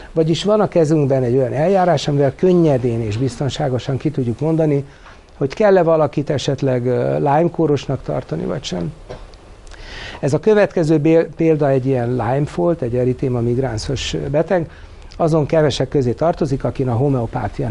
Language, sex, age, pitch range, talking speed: Hungarian, male, 60-79, 130-160 Hz, 140 wpm